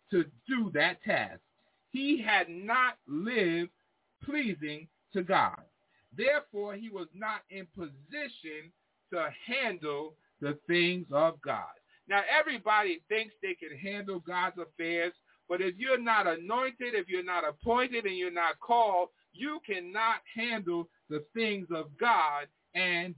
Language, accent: English, American